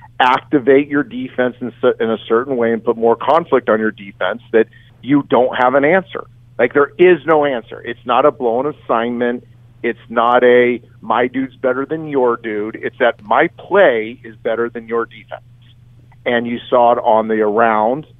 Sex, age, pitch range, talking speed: male, 50-69, 120-145 Hz, 180 wpm